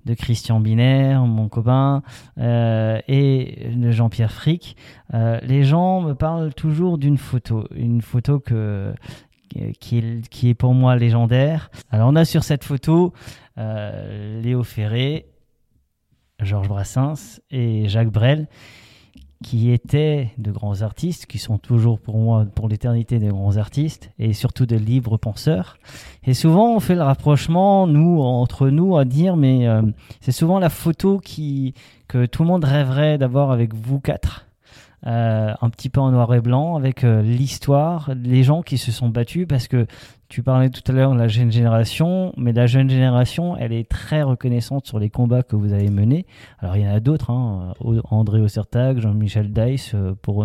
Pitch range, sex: 110-140 Hz, male